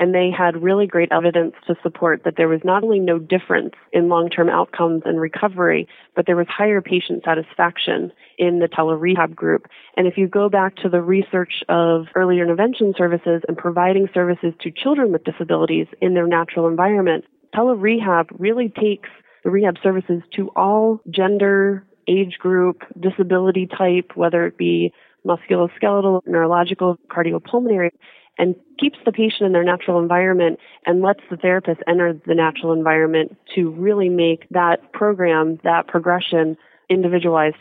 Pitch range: 170-190 Hz